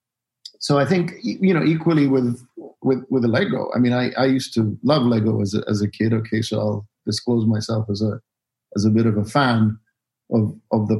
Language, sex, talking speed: English, male, 215 wpm